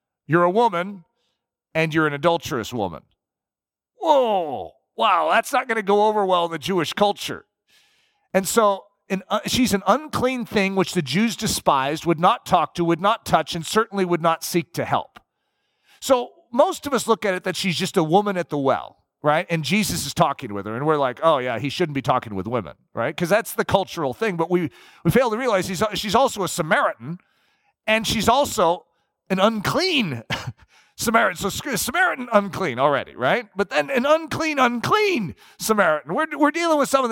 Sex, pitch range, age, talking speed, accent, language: male, 160-220 Hz, 40-59, 190 wpm, American, English